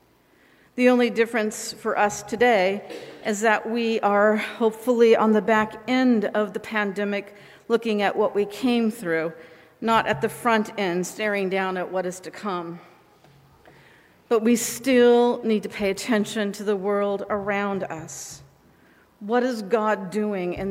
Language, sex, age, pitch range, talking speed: English, female, 50-69, 200-250 Hz, 155 wpm